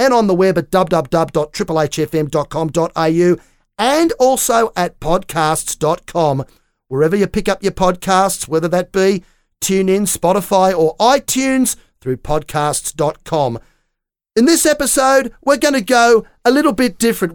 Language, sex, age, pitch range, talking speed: English, male, 40-59, 175-240 Hz, 125 wpm